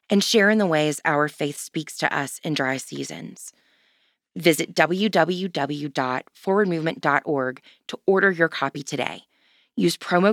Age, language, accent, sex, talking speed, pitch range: 20-39, English, American, female, 130 wpm, 145-205 Hz